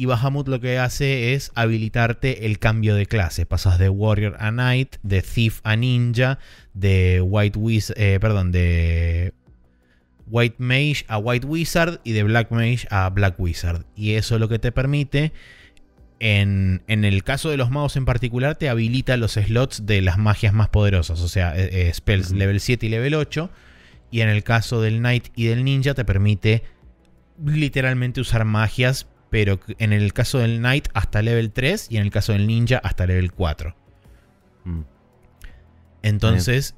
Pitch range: 100-125 Hz